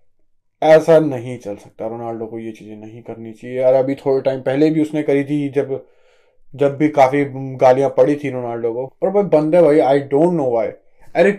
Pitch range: 140-170 Hz